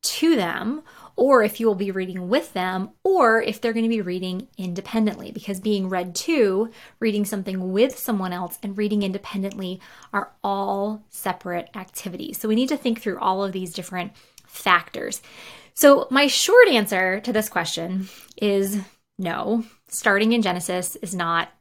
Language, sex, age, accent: English, female, 20-39, American